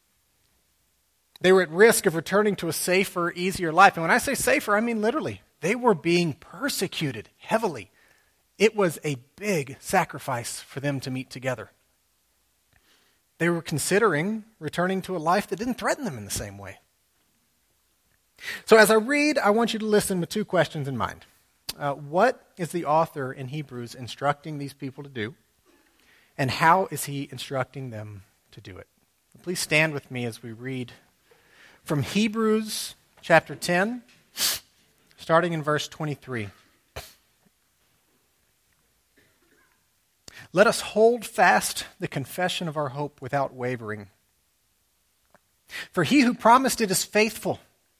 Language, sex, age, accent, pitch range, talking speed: English, male, 30-49, American, 125-195 Hz, 145 wpm